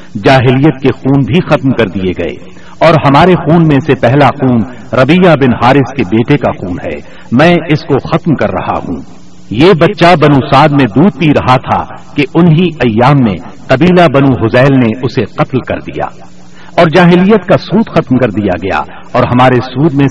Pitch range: 120-165 Hz